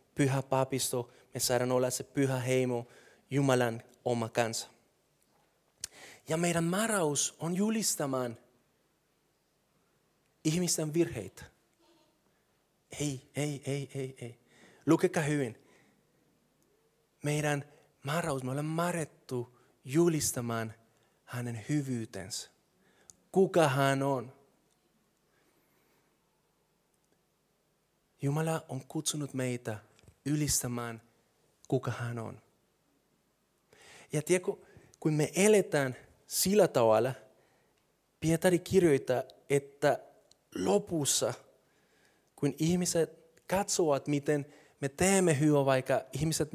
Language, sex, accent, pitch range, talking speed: Finnish, male, native, 125-155 Hz, 85 wpm